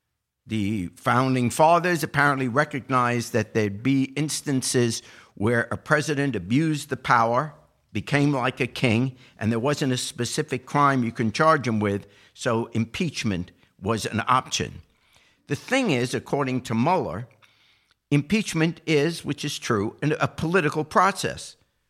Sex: male